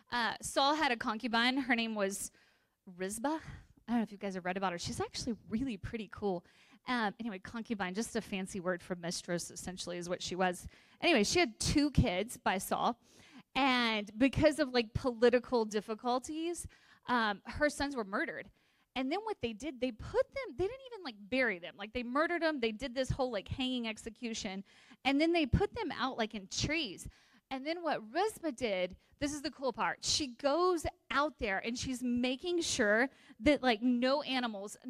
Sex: female